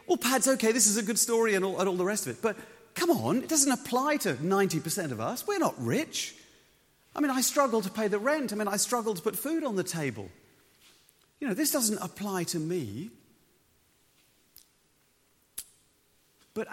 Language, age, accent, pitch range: English, 40-59, British, 145-215 Hz